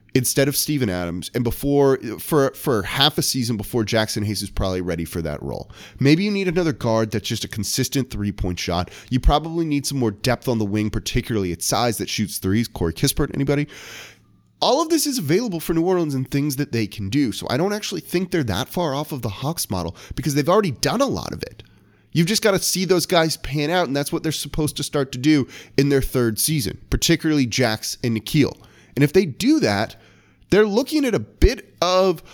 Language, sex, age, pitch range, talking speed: English, male, 30-49, 110-170 Hz, 225 wpm